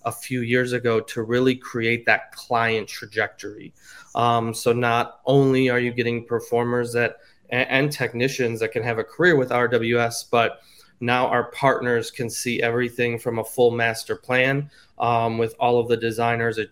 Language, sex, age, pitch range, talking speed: English, male, 20-39, 115-120 Hz, 170 wpm